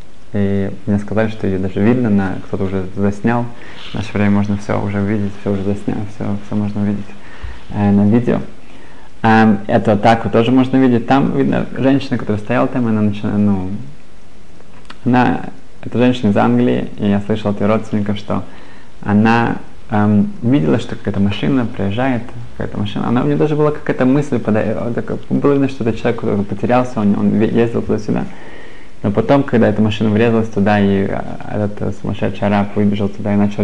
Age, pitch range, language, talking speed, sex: 20-39, 100-115 Hz, Russian, 175 wpm, male